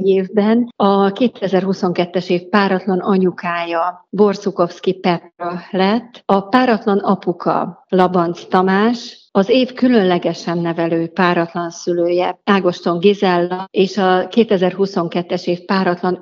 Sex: female